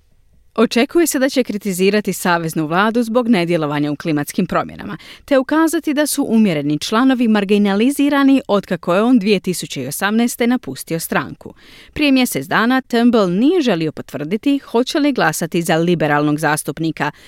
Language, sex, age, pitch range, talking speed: Croatian, female, 30-49, 175-255 Hz, 130 wpm